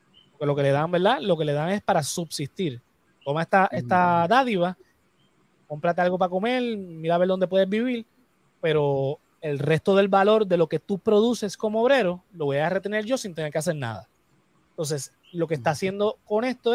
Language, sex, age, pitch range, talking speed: Spanish, male, 30-49, 150-205 Hz, 200 wpm